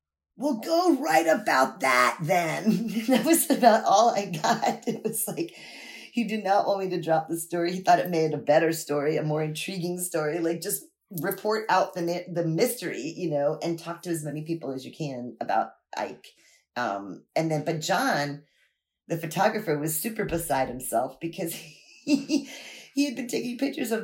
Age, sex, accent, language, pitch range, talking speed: 40-59, female, American, English, 160-215 Hz, 185 wpm